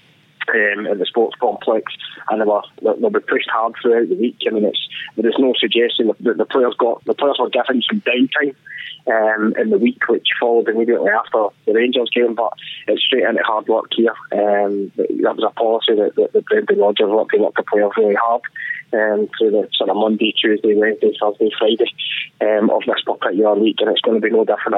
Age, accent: 20-39, British